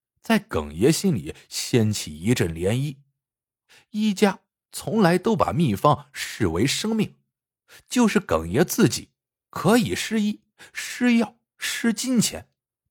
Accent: native